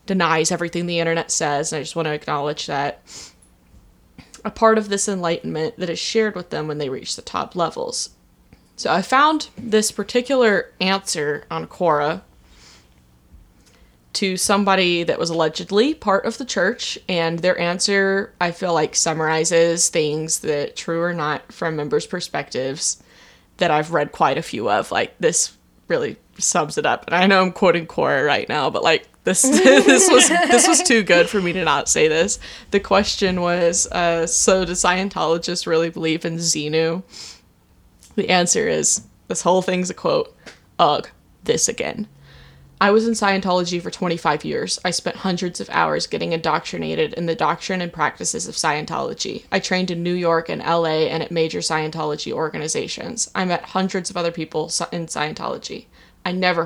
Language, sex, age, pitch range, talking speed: English, female, 20-39, 160-195 Hz, 170 wpm